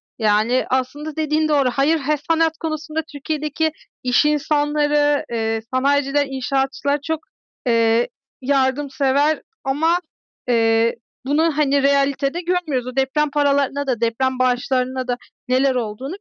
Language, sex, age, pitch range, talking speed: Turkish, female, 40-59, 265-335 Hz, 105 wpm